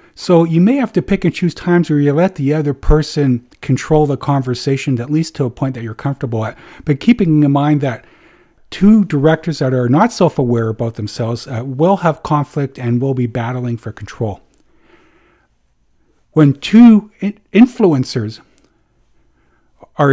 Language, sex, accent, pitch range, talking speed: English, male, American, 130-160 Hz, 160 wpm